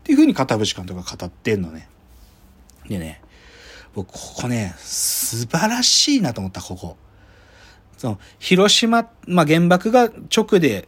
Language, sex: Japanese, male